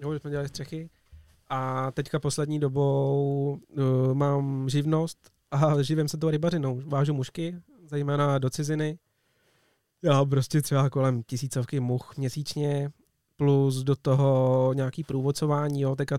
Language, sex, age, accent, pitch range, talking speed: Czech, male, 20-39, native, 135-150 Hz, 125 wpm